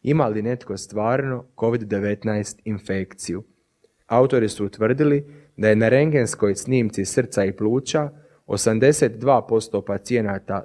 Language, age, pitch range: Croatian, 30-49, 100-130 Hz